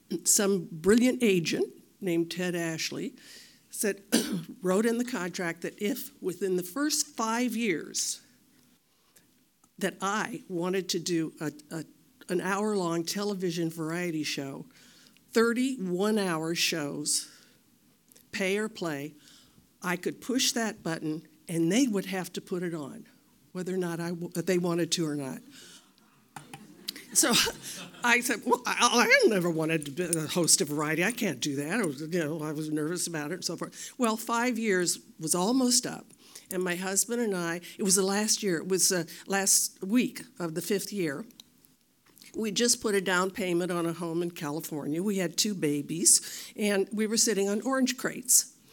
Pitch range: 170-225 Hz